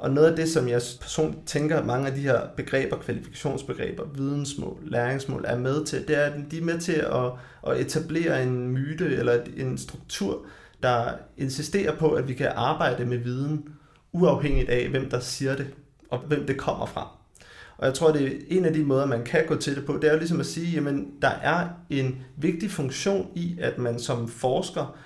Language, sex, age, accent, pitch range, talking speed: Danish, male, 30-49, native, 125-155 Hz, 205 wpm